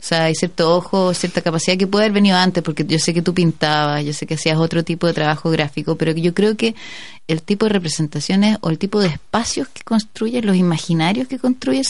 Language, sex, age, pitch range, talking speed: Spanish, female, 20-39, 160-210 Hz, 230 wpm